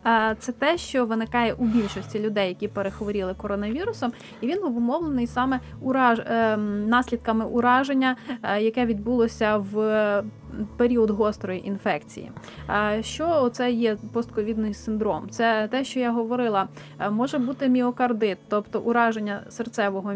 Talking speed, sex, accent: 115 wpm, female, native